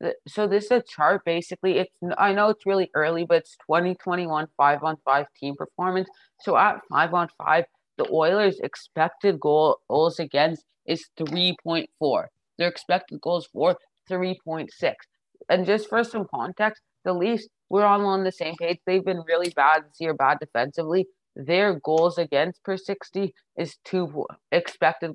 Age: 20-39